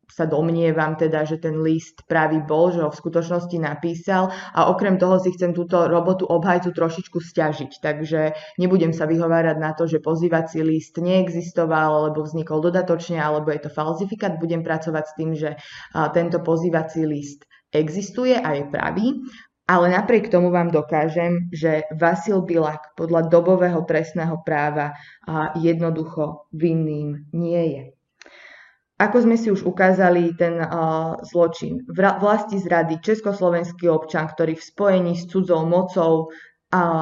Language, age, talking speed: Slovak, 20-39, 140 wpm